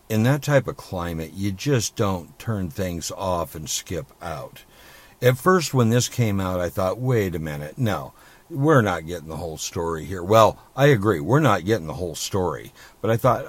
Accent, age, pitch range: American, 60-79, 85-125 Hz